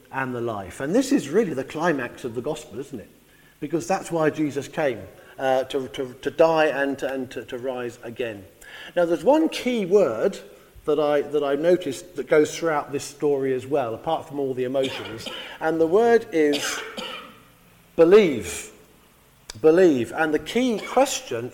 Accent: British